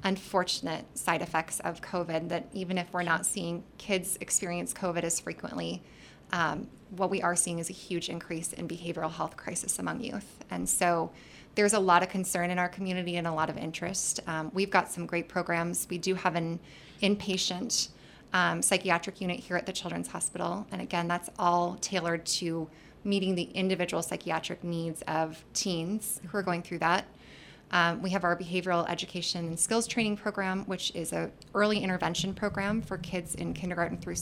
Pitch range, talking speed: 170-195 Hz, 180 wpm